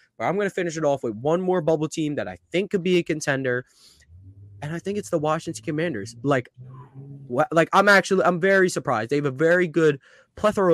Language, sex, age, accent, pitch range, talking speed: English, male, 20-39, American, 115-160 Hz, 210 wpm